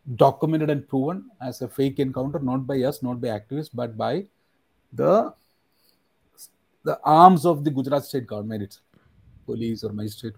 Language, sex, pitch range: Hindi, male, 120-155 Hz